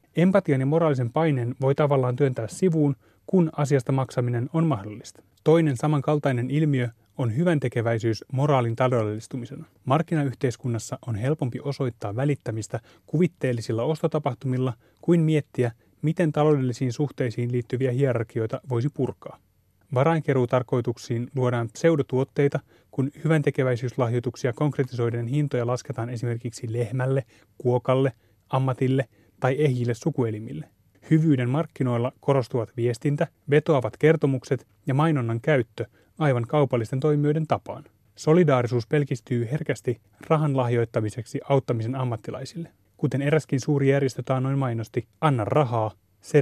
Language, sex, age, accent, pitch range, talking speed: Finnish, male, 30-49, native, 120-150 Hz, 105 wpm